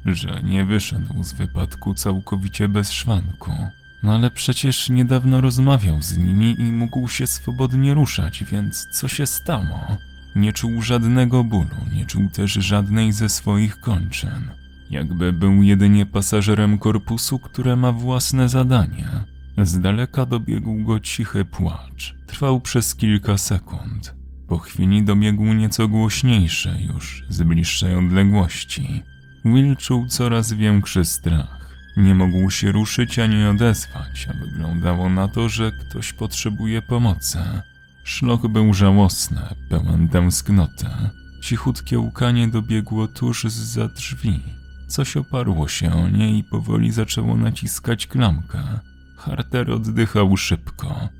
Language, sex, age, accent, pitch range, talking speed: Polish, male, 30-49, native, 90-120 Hz, 125 wpm